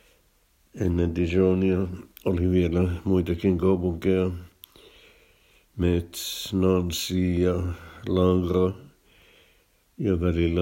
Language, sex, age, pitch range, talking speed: Finnish, male, 60-79, 85-95 Hz, 70 wpm